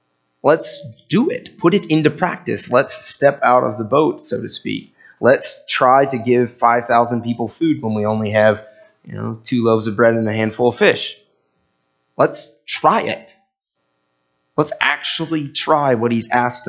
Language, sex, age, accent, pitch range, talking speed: English, male, 30-49, American, 105-130 Hz, 170 wpm